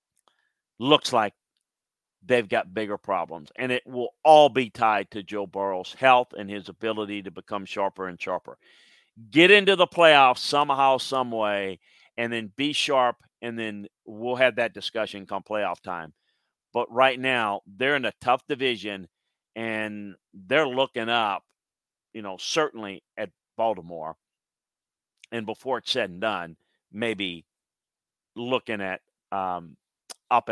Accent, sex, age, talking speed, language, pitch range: American, male, 40-59, 140 wpm, English, 100-130 Hz